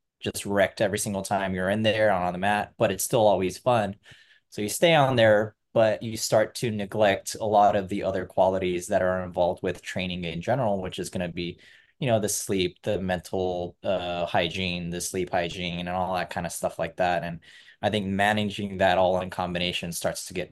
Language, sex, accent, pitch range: English, male, American, 90-105 Hz